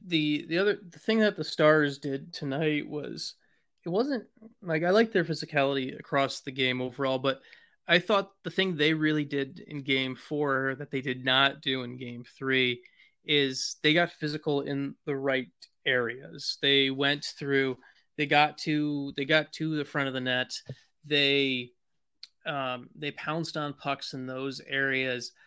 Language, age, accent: English, 30-49, American